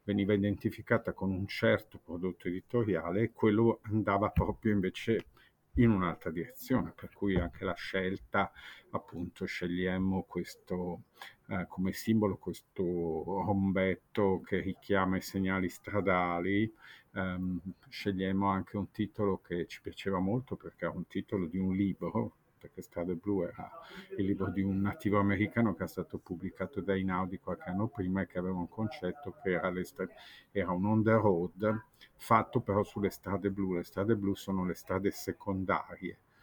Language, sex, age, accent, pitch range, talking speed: Italian, male, 50-69, native, 90-105 Hz, 150 wpm